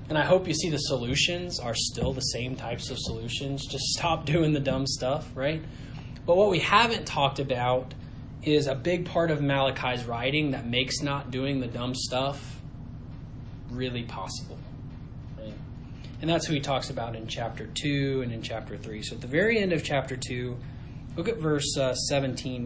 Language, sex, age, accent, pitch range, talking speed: English, male, 20-39, American, 130-155 Hz, 185 wpm